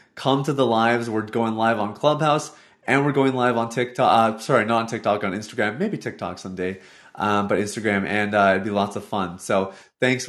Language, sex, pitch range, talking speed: English, male, 105-135 Hz, 215 wpm